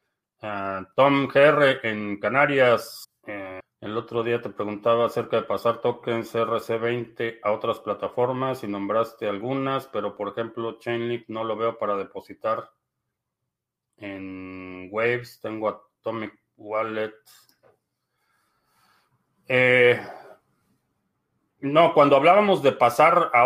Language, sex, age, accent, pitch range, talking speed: Spanish, male, 40-59, Mexican, 105-125 Hz, 110 wpm